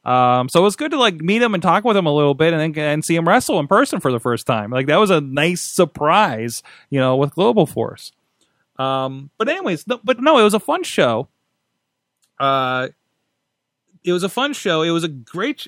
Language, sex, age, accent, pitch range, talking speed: English, male, 30-49, American, 125-165 Hz, 225 wpm